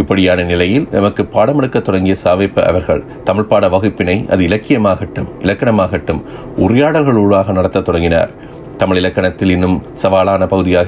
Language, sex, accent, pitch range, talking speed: Tamil, male, native, 90-105 Hz, 120 wpm